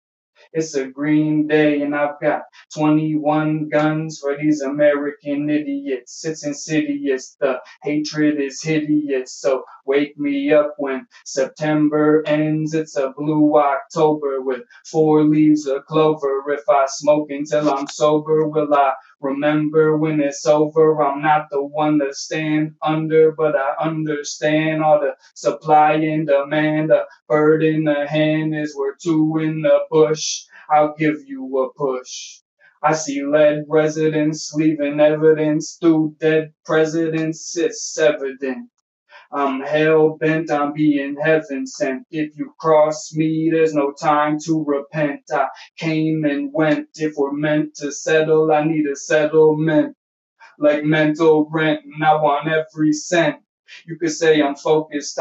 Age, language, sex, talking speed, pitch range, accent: 20-39, English, male, 140 wpm, 145-155 Hz, American